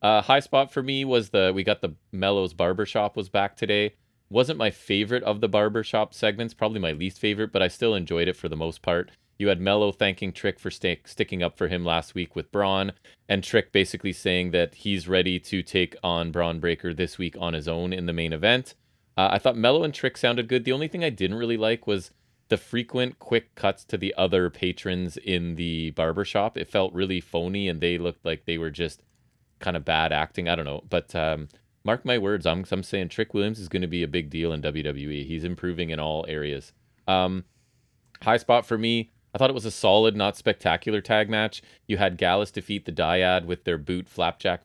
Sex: male